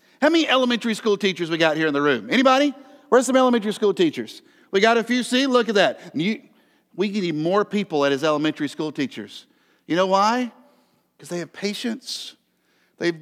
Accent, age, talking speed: American, 50-69, 185 wpm